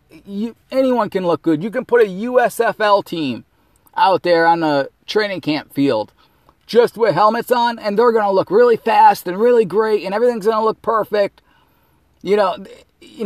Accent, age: American, 30-49